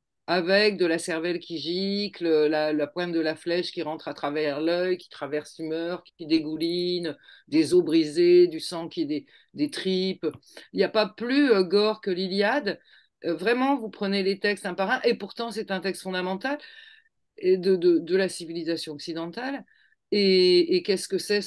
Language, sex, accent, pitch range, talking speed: French, female, French, 175-235 Hz, 185 wpm